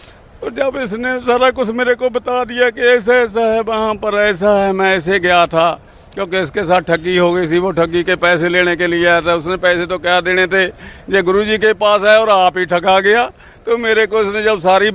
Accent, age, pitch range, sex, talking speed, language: native, 50-69, 170-195 Hz, male, 230 wpm, Hindi